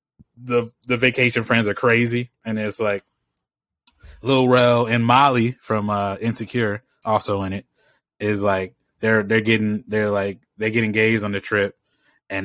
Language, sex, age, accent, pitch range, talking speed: English, male, 20-39, American, 100-125 Hz, 160 wpm